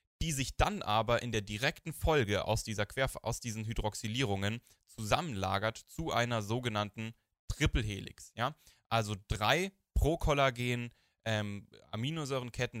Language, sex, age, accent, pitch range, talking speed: German, male, 10-29, German, 100-130 Hz, 110 wpm